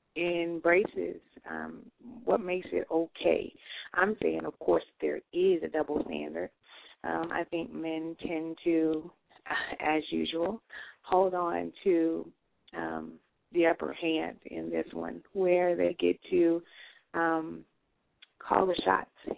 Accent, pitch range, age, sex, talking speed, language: American, 150-165 Hz, 30-49, female, 130 wpm, English